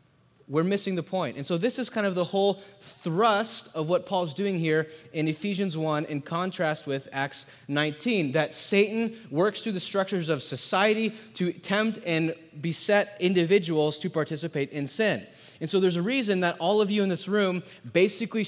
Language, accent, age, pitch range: English, American, 20-39, 130-185 Hz